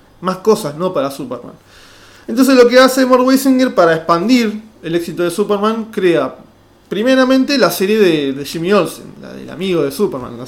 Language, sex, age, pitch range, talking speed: Spanish, male, 20-39, 155-220 Hz, 180 wpm